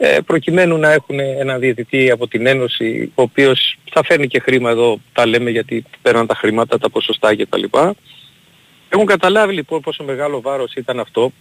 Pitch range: 120-150 Hz